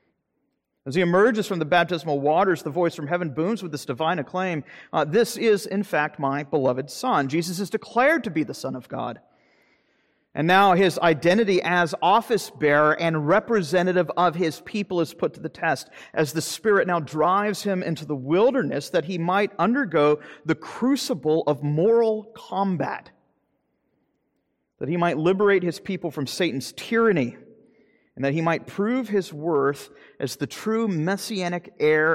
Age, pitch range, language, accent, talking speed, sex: 40-59, 145-190 Hz, English, American, 165 wpm, male